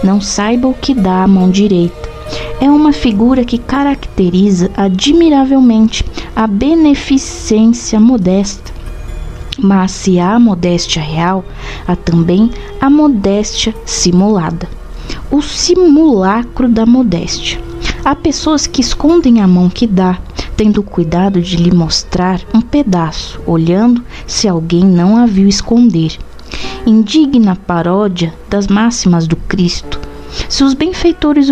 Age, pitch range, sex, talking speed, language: 20-39, 180-255 Hz, female, 120 wpm, Portuguese